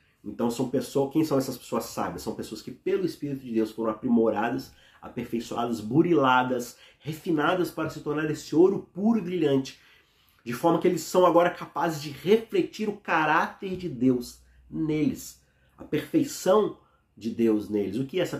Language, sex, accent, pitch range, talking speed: Portuguese, male, Brazilian, 105-140 Hz, 160 wpm